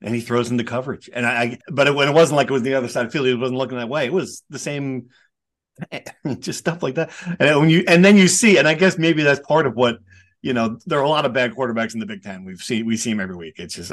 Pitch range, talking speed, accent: 130-180 Hz, 305 wpm, American